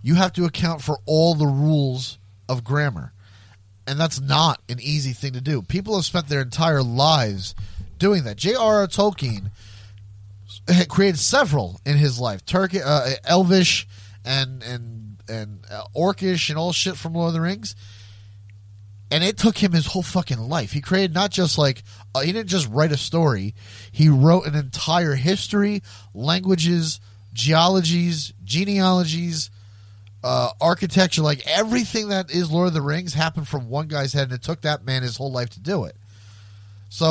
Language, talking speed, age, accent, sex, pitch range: English, 170 wpm, 30-49, American, male, 105-175 Hz